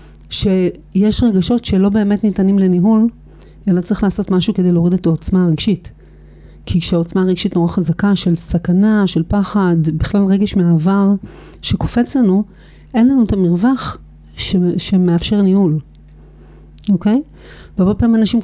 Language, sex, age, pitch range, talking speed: Hebrew, female, 40-59, 170-200 Hz, 125 wpm